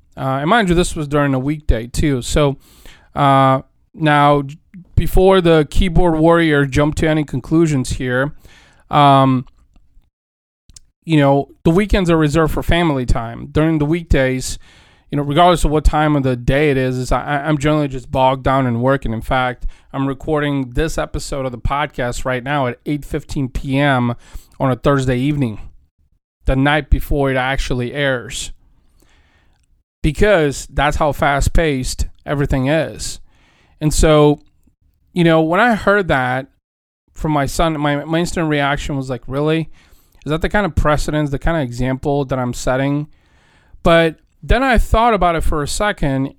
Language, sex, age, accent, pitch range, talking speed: English, male, 30-49, American, 130-160 Hz, 160 wpm